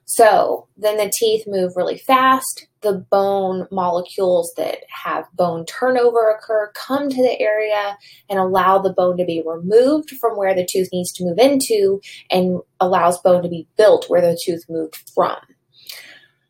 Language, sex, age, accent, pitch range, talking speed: English, female, 20-39, American, 185-235 Hz, 165 wpm